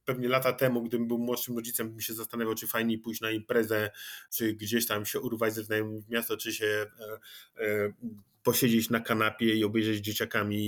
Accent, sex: native, male